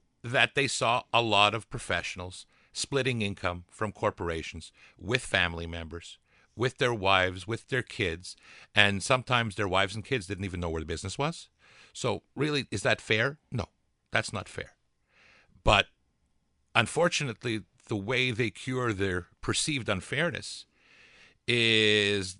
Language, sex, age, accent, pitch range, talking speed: English, male, 50-69, American, 90-120 Hz, 140 wpm